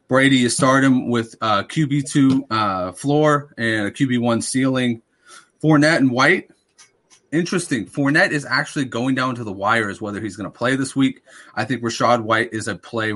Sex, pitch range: male, 105-135 Hz